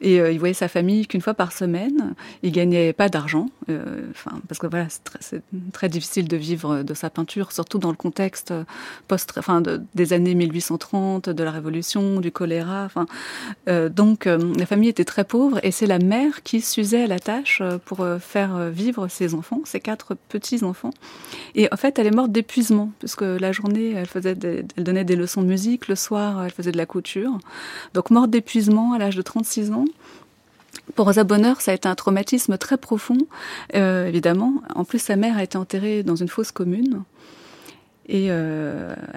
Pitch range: 175-215 Hz